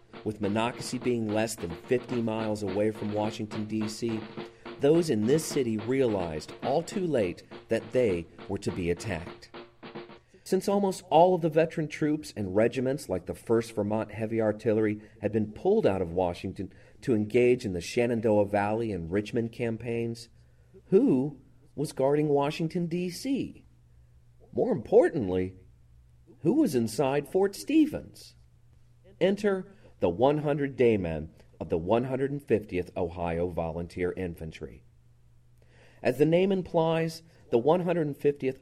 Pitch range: 95-135 Hz